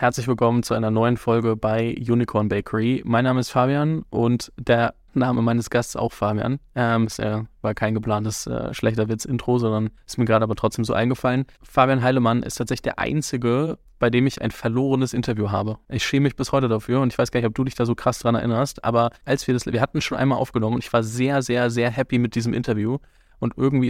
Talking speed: 230 wpm